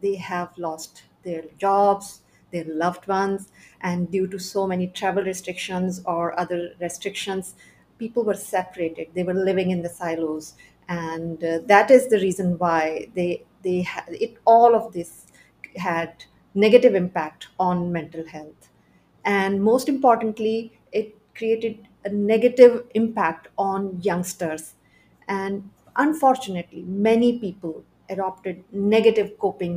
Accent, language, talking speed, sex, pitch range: Indian, English, 130 wpm, female, 175-215 Hz